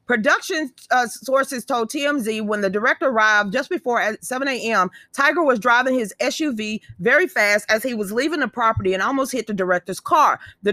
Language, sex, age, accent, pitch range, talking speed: English, female, 40-59, American, 205-275 Hz, 185 wpm